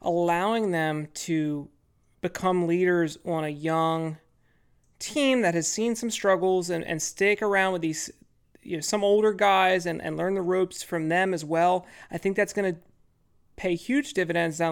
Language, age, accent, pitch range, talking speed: English, 30-49, American, 165-195 Hz, 175 wpm